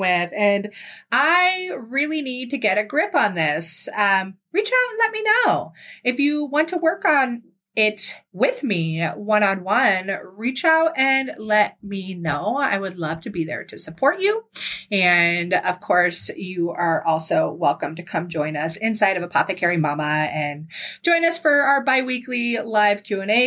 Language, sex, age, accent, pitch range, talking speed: English, female, 30-49, American, 170-270 Hz, 170 wpm